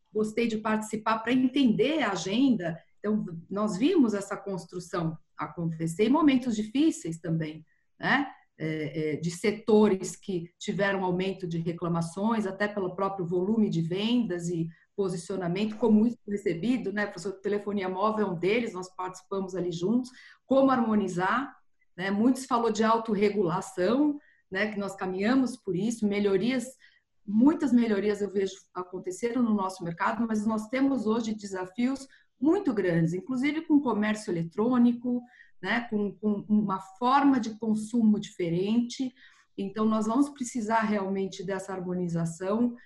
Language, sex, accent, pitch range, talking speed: Portuguese, female, Brazilian, 190-240 Hz, 135 wpm